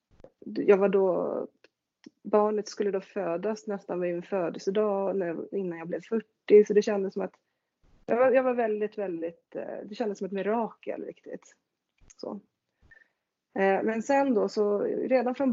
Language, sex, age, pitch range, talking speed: English, female, 30-49, 185-225 Hz, 160 wpm